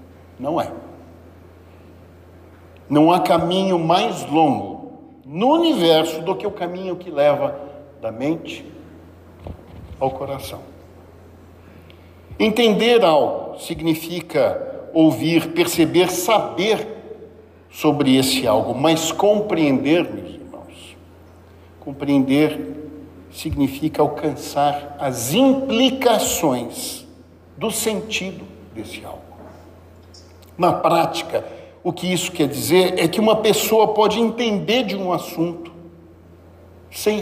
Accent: Brazilian